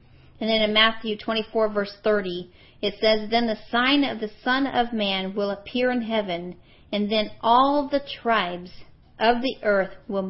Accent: American